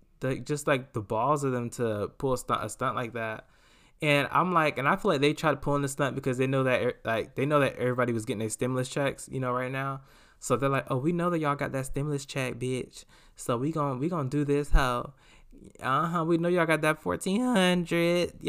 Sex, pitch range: male, 125-170 Hz